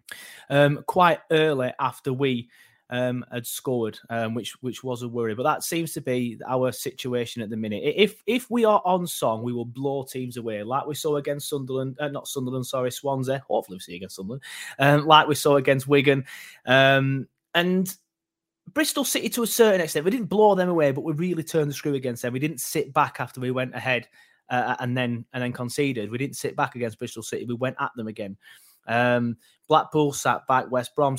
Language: English